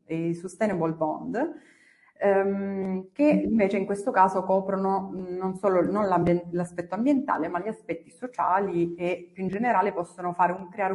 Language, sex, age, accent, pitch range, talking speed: Italian, female, 30-49, native, 175-230 Hz, 150 wpm